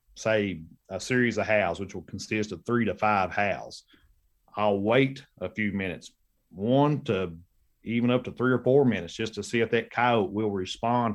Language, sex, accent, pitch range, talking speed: English, male, American, 105-130 Hz, 190 wpm